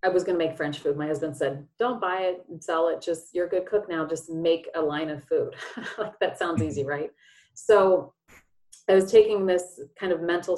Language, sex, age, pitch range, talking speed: English, female, 30-49, 160-195 Hz, 225 wpm